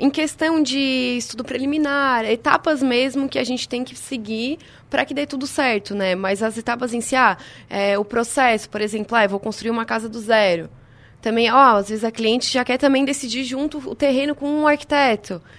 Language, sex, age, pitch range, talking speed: Portuguese, female, 20-39, 220-255 Hz, 210 wpm